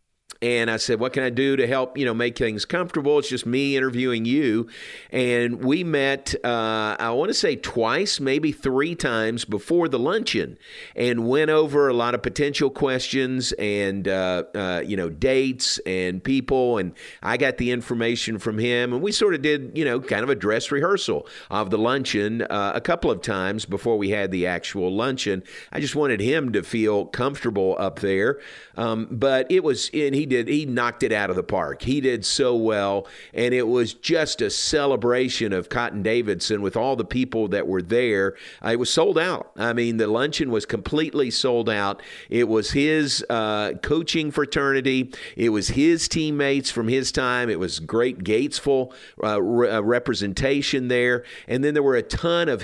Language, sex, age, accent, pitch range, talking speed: English, male, 50-69, American, 110-135 Hz, 190 wpm